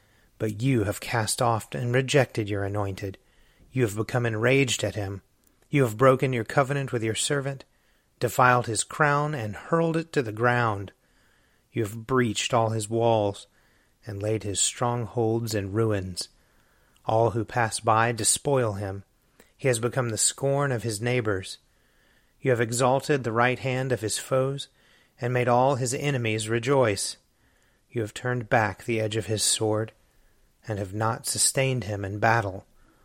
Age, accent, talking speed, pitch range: 30-49, American, 160 wpm, 110-130 Hz